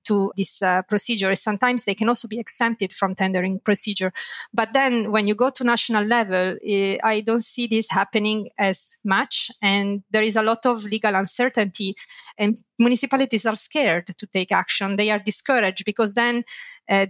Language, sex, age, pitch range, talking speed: English, female, 20-39, 195-225 Hz, 175 wpm